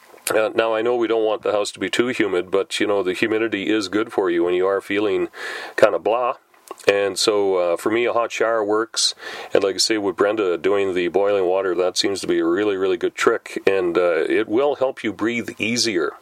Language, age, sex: English, 40-59, male